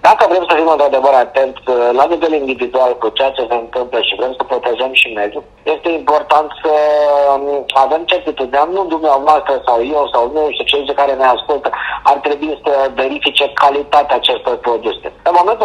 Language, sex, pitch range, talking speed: Romanian, male, 125-150 Hz, 175 wpm